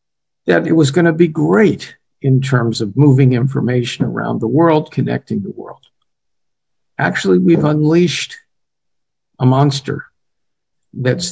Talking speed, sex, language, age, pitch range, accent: 125 wpm, male, English, 50-69, 120-155 Hz, American